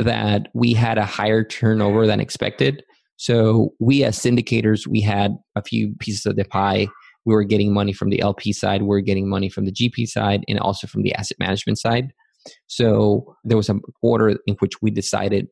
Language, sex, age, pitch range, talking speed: English, male, 20-39, 100-115 Hz, 200 wpm